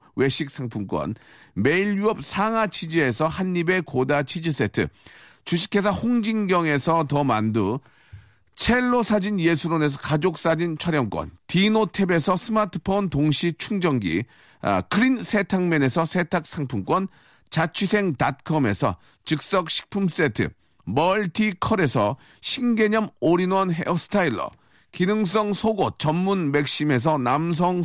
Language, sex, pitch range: Korean, male, 150-205 Hz